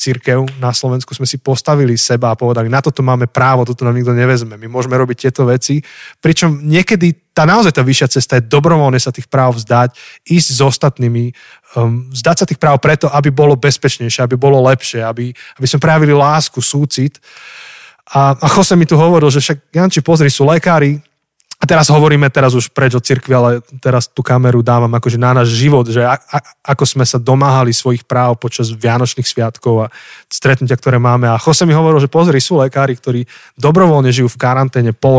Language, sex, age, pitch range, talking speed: Slovak, male, 20-39, 125-145 Hz, 190 wpm